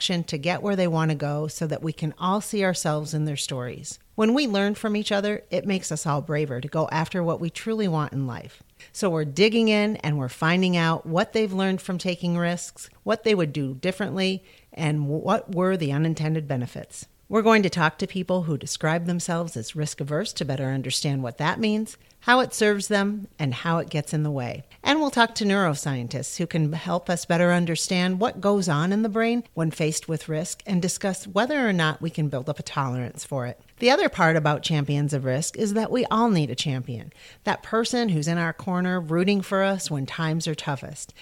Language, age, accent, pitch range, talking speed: English, 50-69, American, 150-195 Hz, 220 wpm